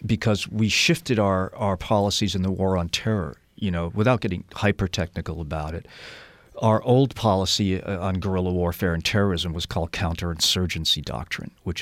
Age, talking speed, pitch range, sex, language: 40-59, 155 wpm, 80-100 Hz, male, English